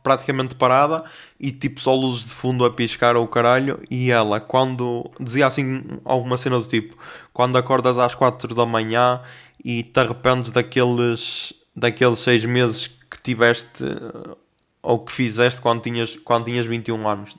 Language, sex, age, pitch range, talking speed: Portuguese, male, 20-39, 120-145 Hz, 160 wpm